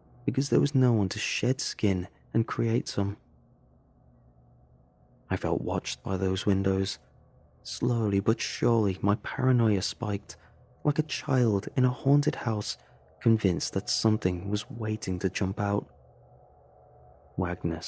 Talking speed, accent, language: 130 wpm, British, English